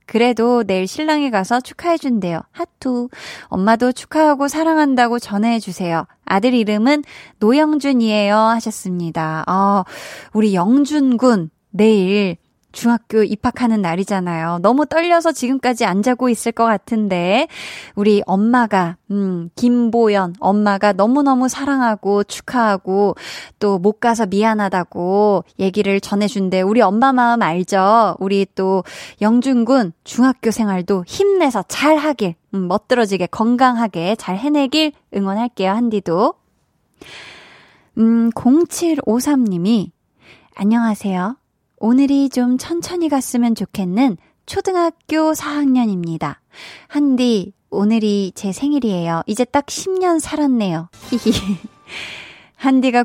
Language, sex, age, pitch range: Korean, female, 20-39, 200-275 Hz